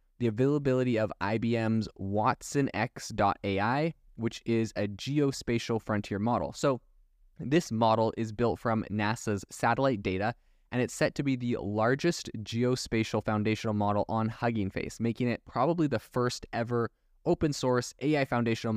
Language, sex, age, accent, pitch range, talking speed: English, male, 20-39, American, 105-130 Hz, 135 wpm